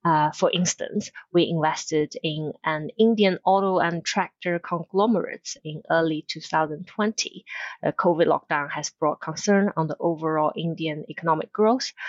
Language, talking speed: English, 135 wpm